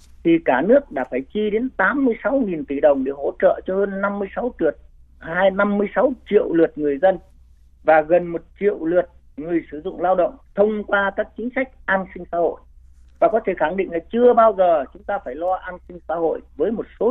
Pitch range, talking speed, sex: 145-220 Hz, 220 wpm, male